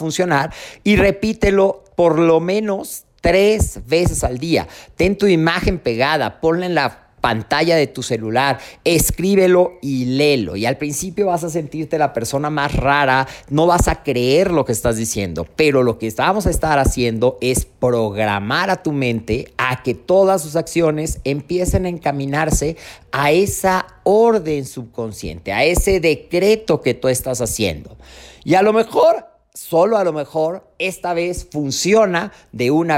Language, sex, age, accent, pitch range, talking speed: Spanish, male, 40-59, Mexican, 120-170 Hz, 155 wpm